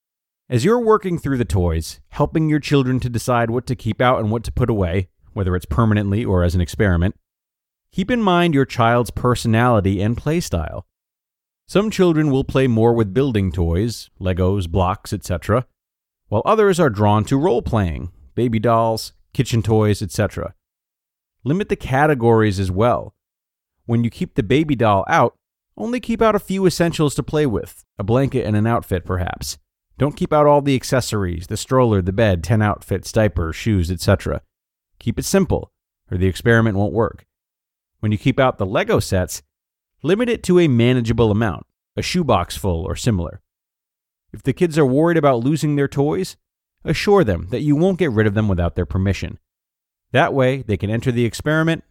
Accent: American